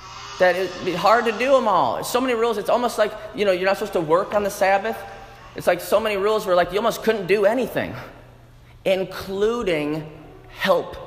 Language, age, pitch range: English, 30-49, 125-200 Hz